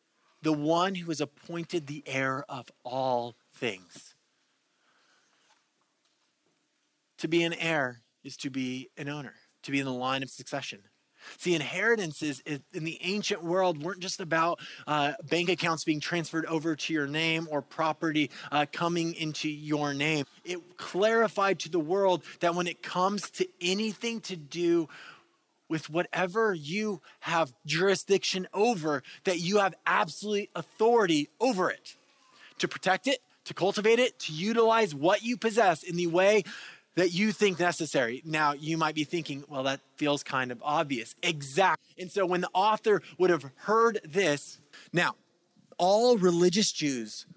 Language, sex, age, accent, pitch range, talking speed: English, male, 20-39, American, 140-185 Hz, 150 wpm